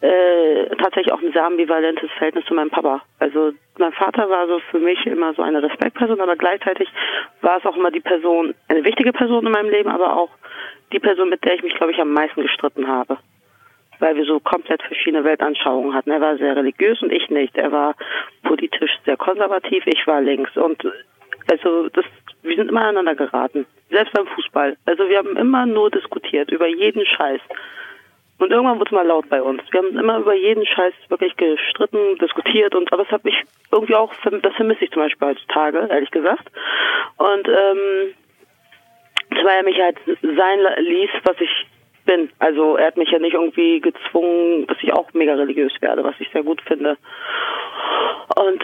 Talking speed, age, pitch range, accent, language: 190 wpm, 40-59, 160-220 Hz, German, German